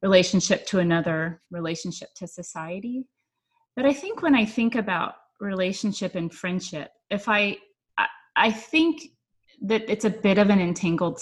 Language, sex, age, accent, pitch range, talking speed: English, female, 30-49, American, 175-225 Hz, 150 wpm